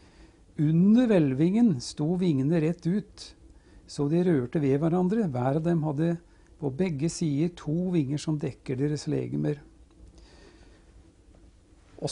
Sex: male